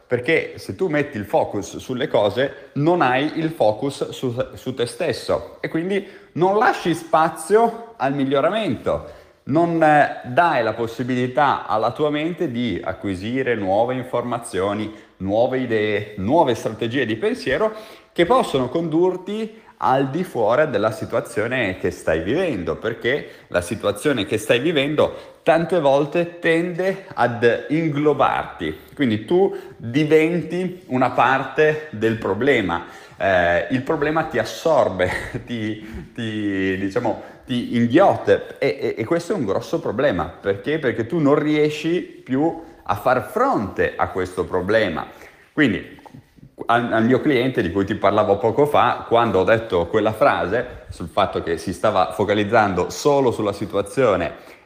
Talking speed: 135 wpm